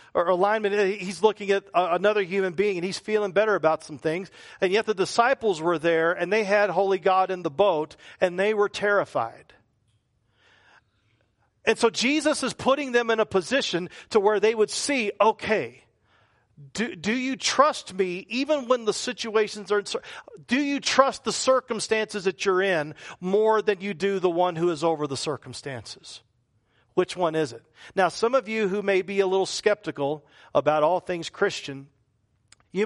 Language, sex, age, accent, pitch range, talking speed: English, male, 50-69, American, 155-220 Hz, 175 wpm